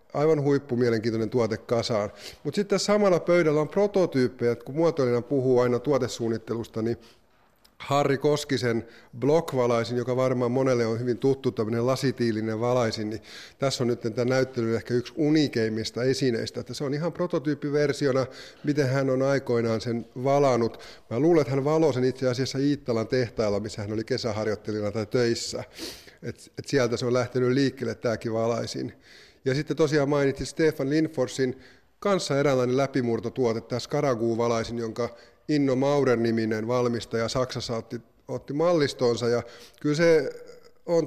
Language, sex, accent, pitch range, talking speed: Finnish, male, native, 115-140 Hz, 145 wpm